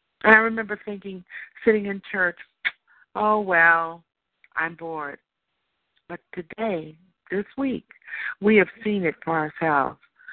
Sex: female